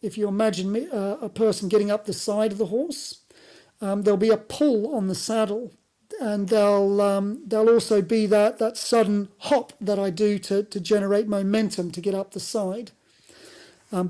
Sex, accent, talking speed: male, British, 190 wpm